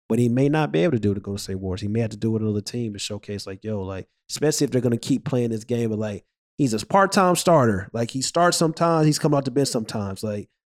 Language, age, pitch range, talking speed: English, 20-39, 115-145 Hz, 285 wpm